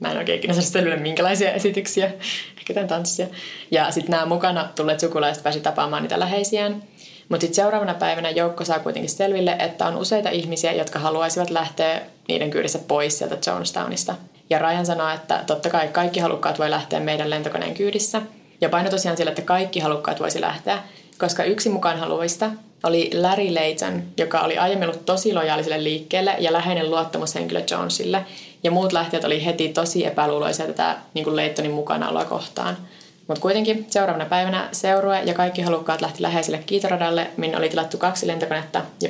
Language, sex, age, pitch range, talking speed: Finnish, female, 20-39, 160-190 Hz, 165 wpm